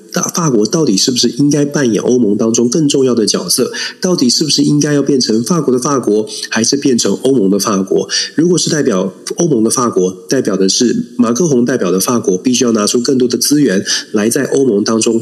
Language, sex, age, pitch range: Chinese, male, 30-49, 95-130 Hz